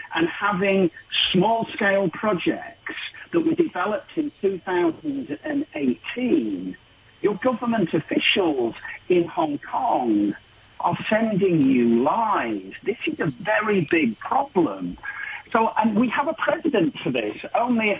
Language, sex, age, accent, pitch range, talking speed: English, male, 50-69, British, 170-250 Hz, 115 wpm